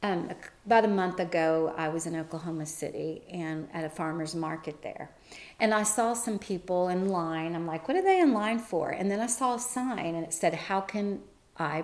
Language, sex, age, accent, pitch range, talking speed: English, female, 40-59, American, 165-210 Hz, 220 wpm